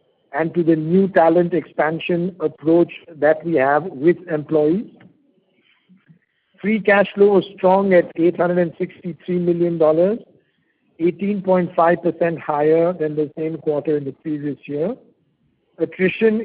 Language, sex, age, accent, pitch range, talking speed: English, male, 50-69, Indian, 155-180 Hz, 115 wpm